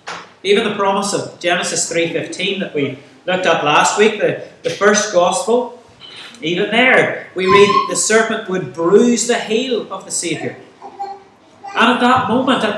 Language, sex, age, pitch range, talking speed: English, male, 30-49, 175-235 Hz, 155 wpm